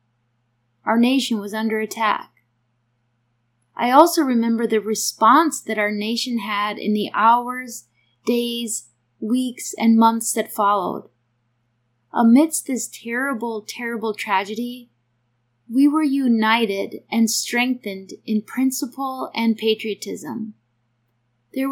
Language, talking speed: English, 105 wpm